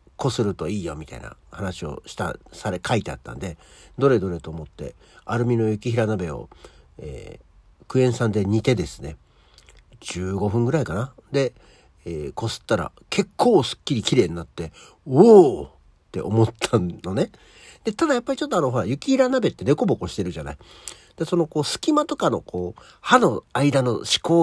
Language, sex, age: Japanese, male, 60-79